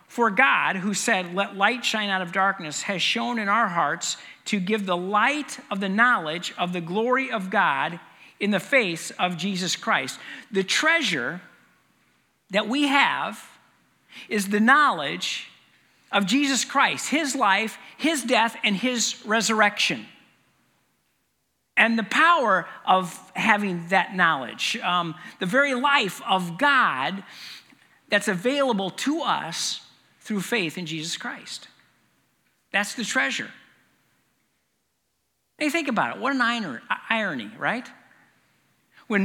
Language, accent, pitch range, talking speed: English, American, 190-250 Hz, 130 wpm